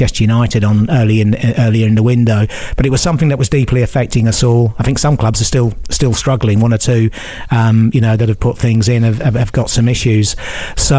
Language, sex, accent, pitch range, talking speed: English, male, British, 110-125 Hz, 240 wpm